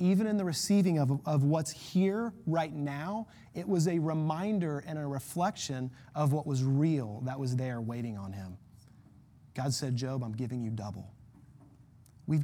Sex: male